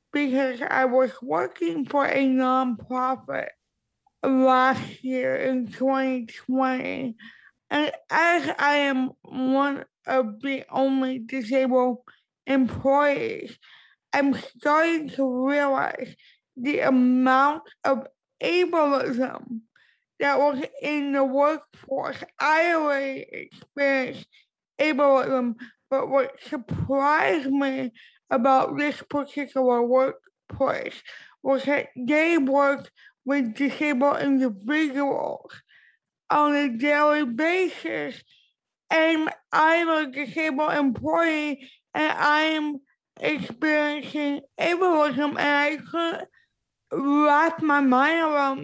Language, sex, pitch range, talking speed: English, female, 265-300 Hz, 90 wpm